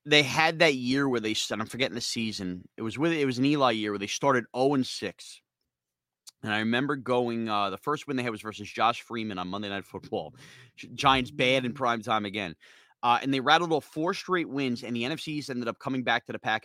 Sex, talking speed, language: male, 240 wpm, English